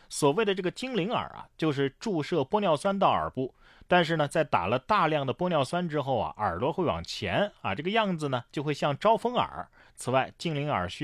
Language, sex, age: Chinese, male, 30-49